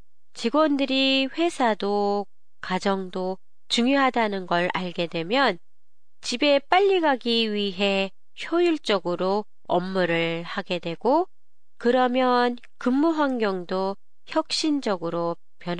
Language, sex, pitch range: Japanese, female, 180-265 Hz